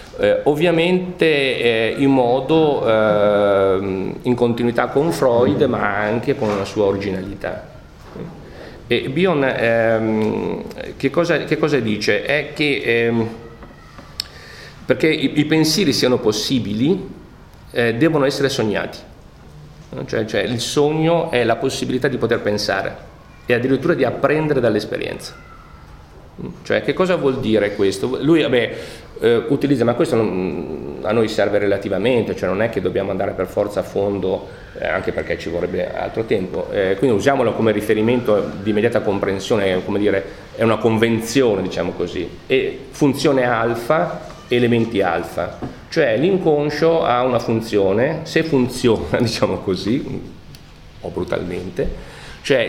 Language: Italian